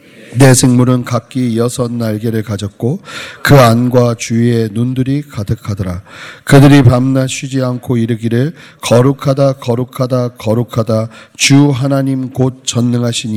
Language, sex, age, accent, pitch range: Korean, male, 40-59, native, 110-130 Hz